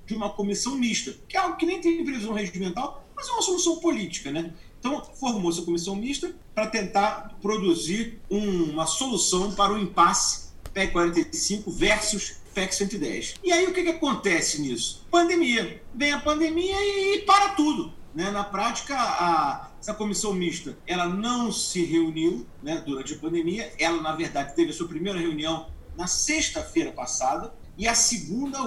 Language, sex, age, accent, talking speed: Portuguese, male, 40-59, Brazilian, 170 wpm